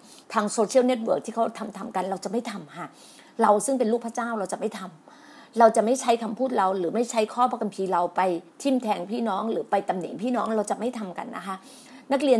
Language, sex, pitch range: Thai, female, 190-250 Hz